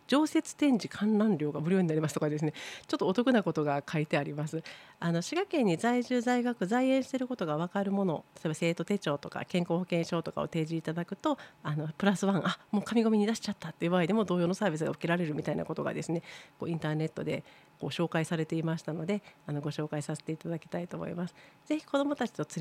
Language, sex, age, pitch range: Japanese, female, 40-59, 155-220 Hz